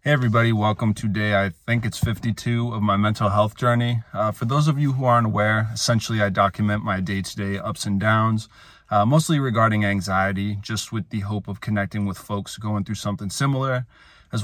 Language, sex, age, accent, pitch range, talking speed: English, male, 30-49, American, 100-115 Hz, 195 wpm